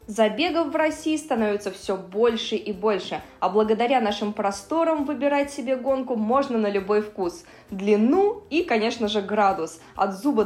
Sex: female